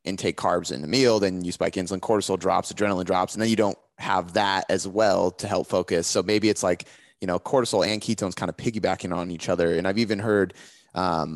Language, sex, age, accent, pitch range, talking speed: English, male, 30-49, American, 90-110 Hz, 230 wpm